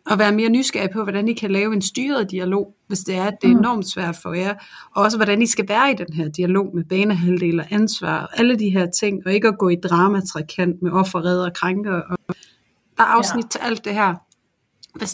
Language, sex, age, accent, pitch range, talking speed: Danish, female, 30-49, native, 180-210 Hz, 225 wpm